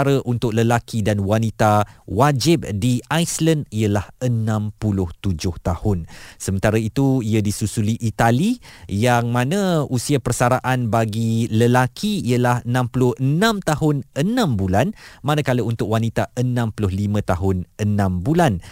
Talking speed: 105 wpm